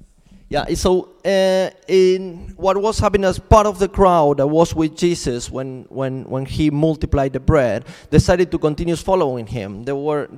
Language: English